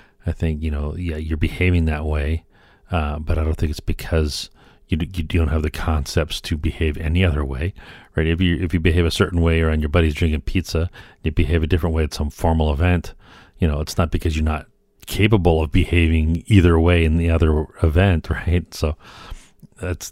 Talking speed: 205 wpm